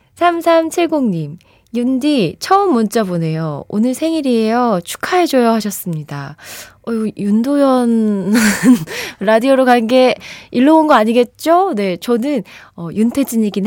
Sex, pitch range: female, 175-250 Hz